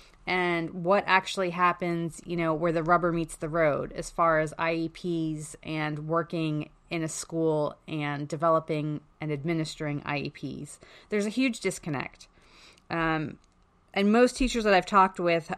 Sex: female